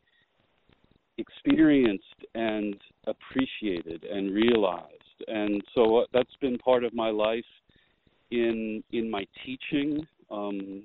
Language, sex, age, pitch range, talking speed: English, male, 40-59, 100-125 Hz, 105 wpm